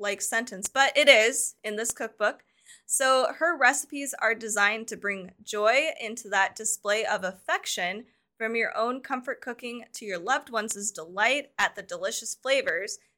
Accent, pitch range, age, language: American, 215-270 Hz, 20-39, English